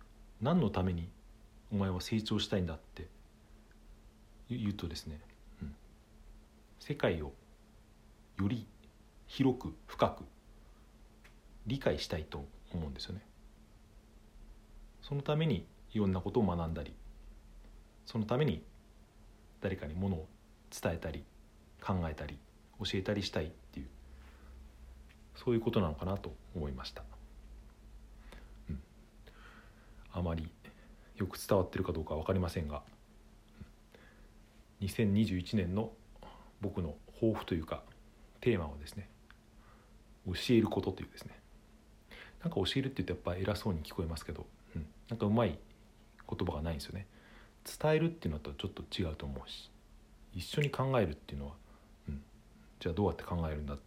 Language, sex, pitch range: Japanese, male, 80-110 Hz